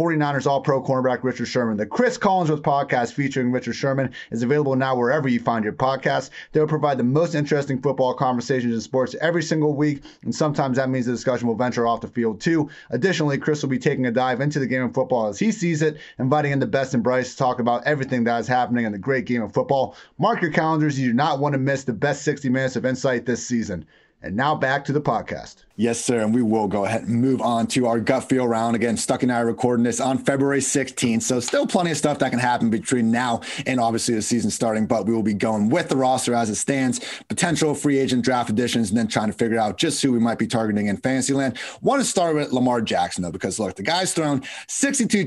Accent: American